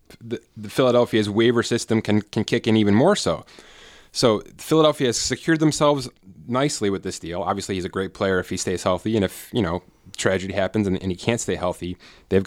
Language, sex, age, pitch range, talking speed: English, male, 20-39, 95-125 Hz, 205 wpm